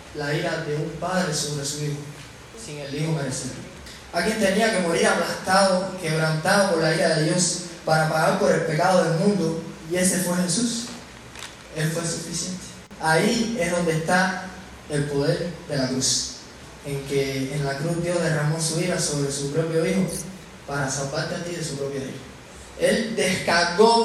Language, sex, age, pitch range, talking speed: English, male, 20-39, 150-190 Hz, 175 wpm